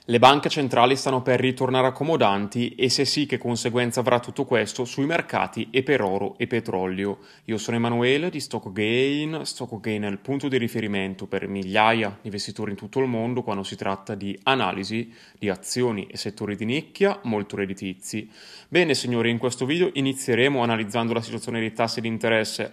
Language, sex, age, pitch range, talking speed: Italian, male, 30-49, 110-130 Hz, 175 wpm